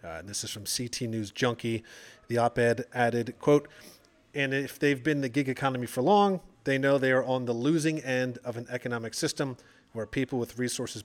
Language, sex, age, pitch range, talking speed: English, male, 30-49, 120-140 Hz, 200 wpm